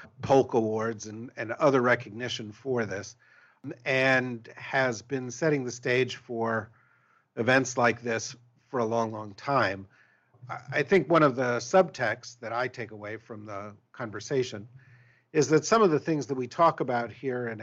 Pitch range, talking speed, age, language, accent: 105-130 Hz, 165 wpm, 50-69, English, American